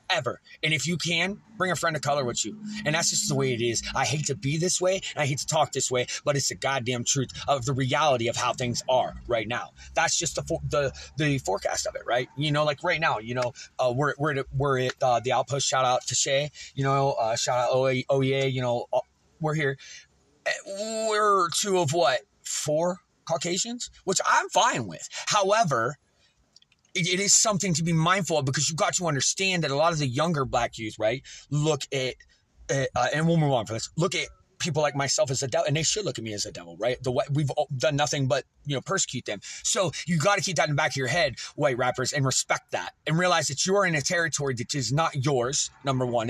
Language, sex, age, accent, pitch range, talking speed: English, male, 30-49, American, 130-165 Hz, 240 wpm